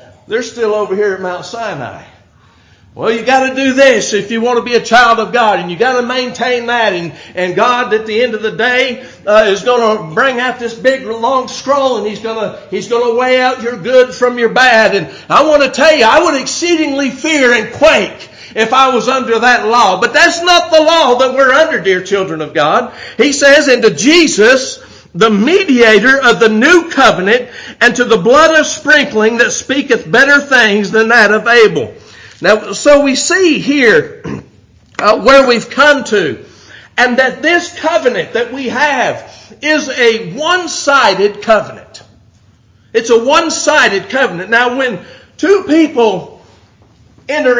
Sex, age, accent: male, 50-69, American